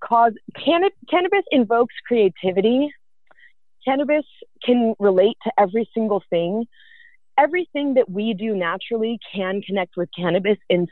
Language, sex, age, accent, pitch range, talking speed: English, female, 30-49, American, 195-265 Hz, 115 wpm